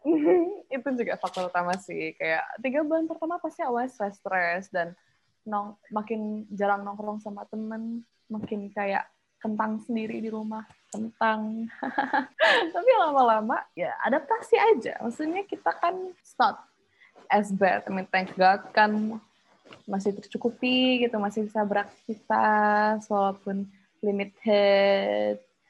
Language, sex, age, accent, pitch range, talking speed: Indonesian, female, 20-39, native, 200-250 Hz, 120 wpm